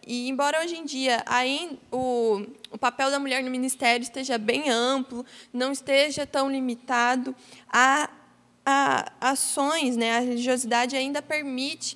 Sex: female